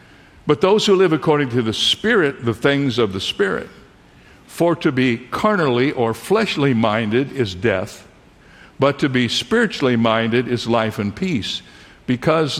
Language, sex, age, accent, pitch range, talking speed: English, male, 60-79, American, 125-175 Hz, 145 wpm